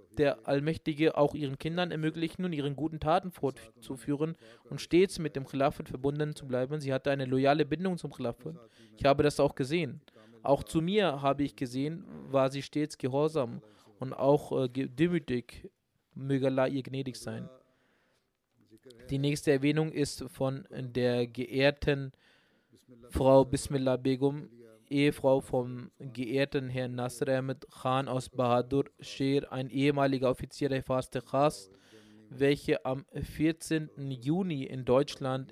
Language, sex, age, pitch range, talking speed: German, male, 20-39, 130-150 Hz, 140 wpm